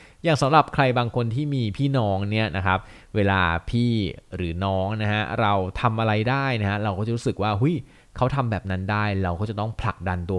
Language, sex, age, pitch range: Thai, male, 20-39, 90-115 Hz